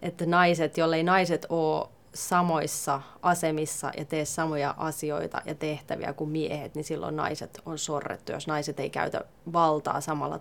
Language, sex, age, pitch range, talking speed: Finnish, female, 20-39, 150-175 Hz, 150 wpm